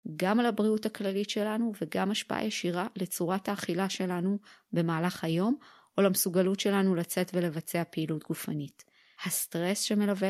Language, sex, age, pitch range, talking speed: Hebrew, female, 30-49, 170-210 Hz, 130 wpm